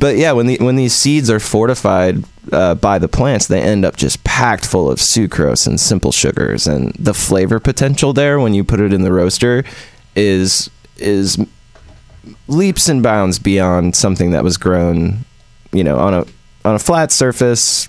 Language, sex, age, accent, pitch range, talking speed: English, male, 20-39, American, 90-115 Hz, 180 wpm